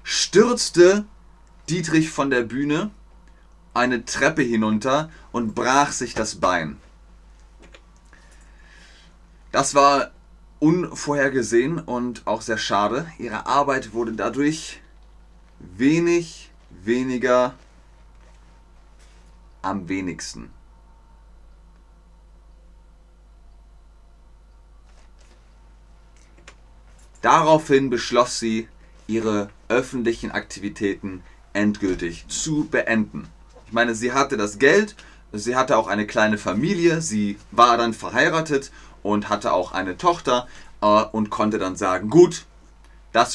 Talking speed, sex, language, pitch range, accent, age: 90 wpm, male, German, 95-140 Hz, German, 30-49